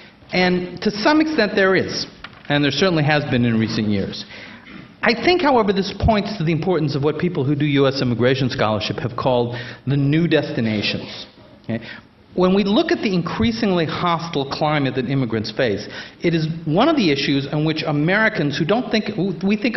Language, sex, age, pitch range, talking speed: English, male, 50-69, 125-180 Hz, 180 wpm